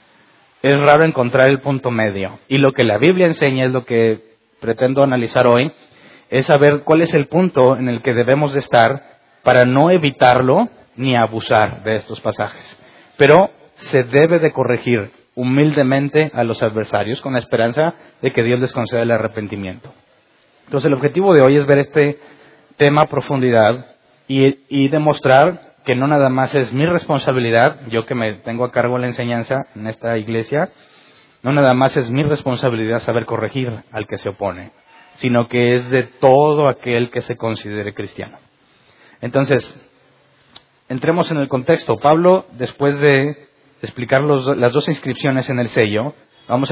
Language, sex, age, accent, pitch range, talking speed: Spanish, male, 30-49, Mexican, 120-145 Hz, 165 wpm